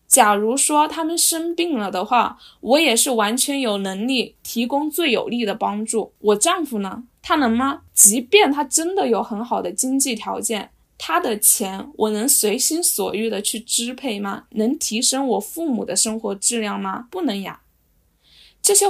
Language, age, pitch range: Chinese, 10-29, 220-290 Hz